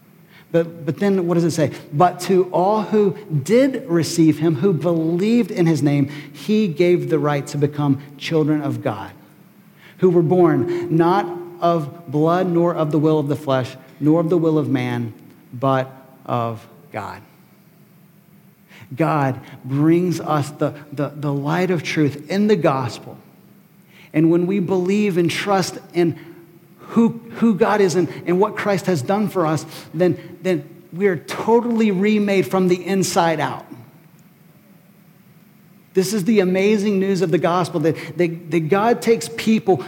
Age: 40-59